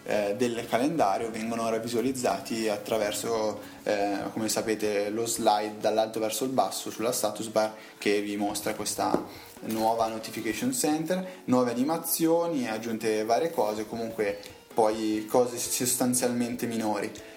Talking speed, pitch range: 125 wpm, 110-125 Hz